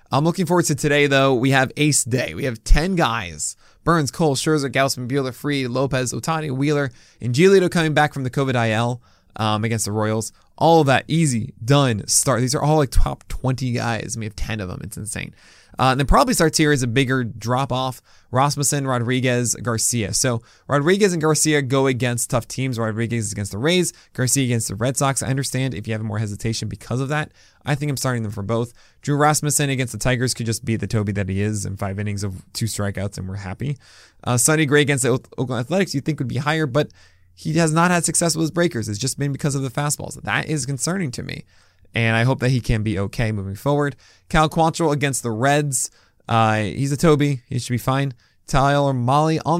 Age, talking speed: 20-39, 225 wpm